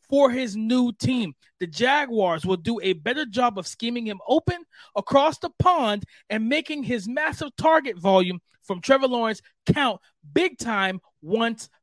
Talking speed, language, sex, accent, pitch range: 155 wpm, English, male, American, 210-270 Hz